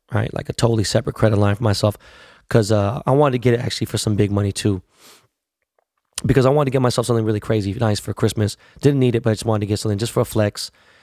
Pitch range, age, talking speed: 105-125 Hz, 20-39, 260 wpm